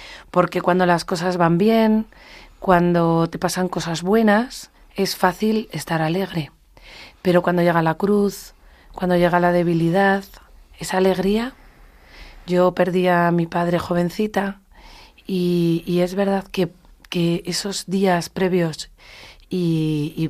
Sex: female